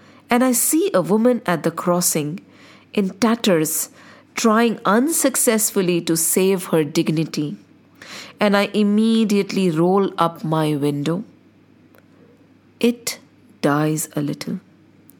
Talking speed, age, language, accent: 105 wpm, 50-69, English, Indian